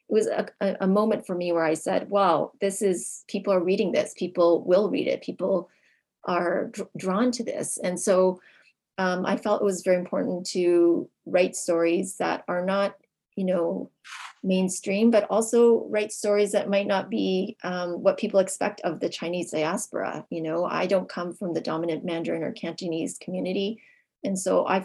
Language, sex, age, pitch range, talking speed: English, female, 30-49, 175-210 Hz, 180 wpm